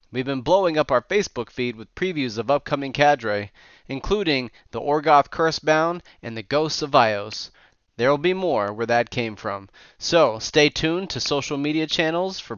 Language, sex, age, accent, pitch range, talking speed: English, male, 30-49, American, 120-160 Hz, 175 wpm